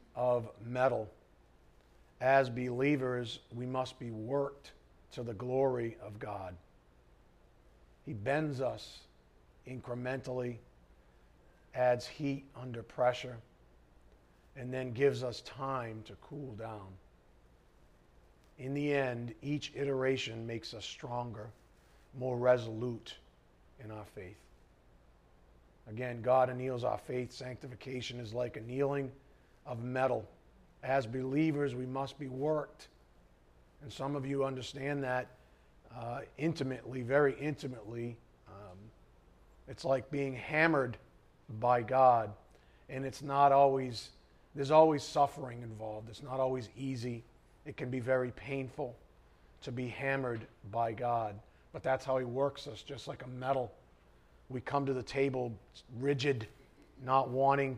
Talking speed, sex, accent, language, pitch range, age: 120 wpm, male, American, English, 95-135 Hz, 50-69